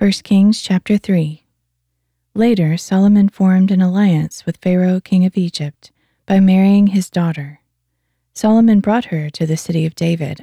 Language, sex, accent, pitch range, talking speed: English, female, American, 155-190 Hz, 150 wpm